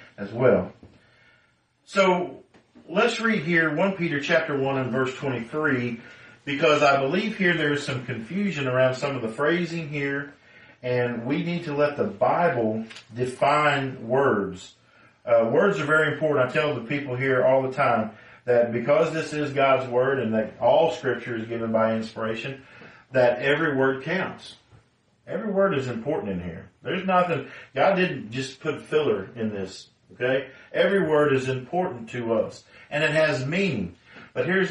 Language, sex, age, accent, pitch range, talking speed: English, male, 40-59, American, 120-160 Hz, 165 wpm